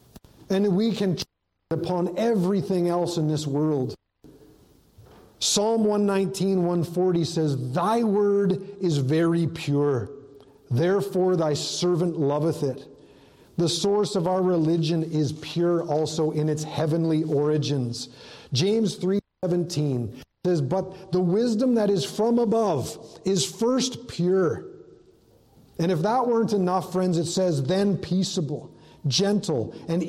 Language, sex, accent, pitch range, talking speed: English, male, American, 150-190 Hz, 125 wpm